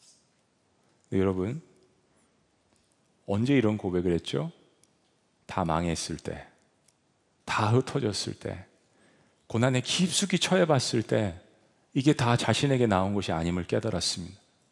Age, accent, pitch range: 40-59, native, 100-140 Hz